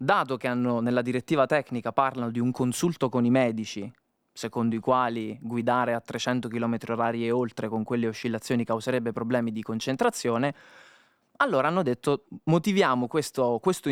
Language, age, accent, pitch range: Italian, 20-39, native, 115-155 Hz